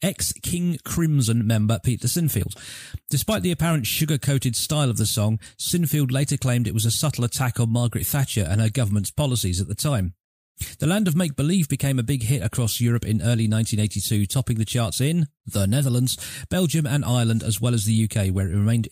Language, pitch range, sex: English, 110-145 Hz, male